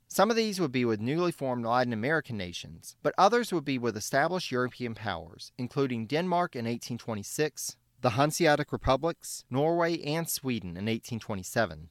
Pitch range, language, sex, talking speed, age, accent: 110-150 Hz, English, male, 155 wpm, 30-49, American